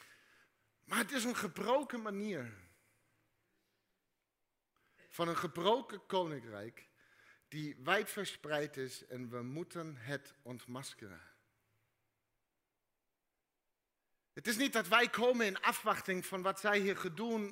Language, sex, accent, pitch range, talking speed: Dutch, male, Dutch, 180-235 Hz, 110 wpm